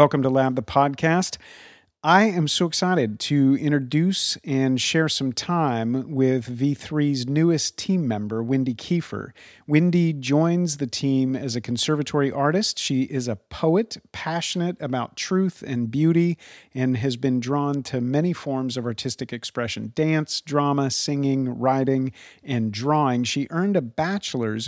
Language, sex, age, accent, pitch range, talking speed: English, male, 40-59, American, 125-155 Hz, 145 wpm